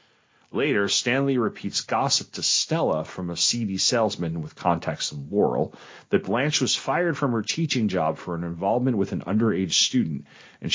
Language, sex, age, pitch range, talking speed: English, male, 40-59, 85-110 Hz, 165 wpm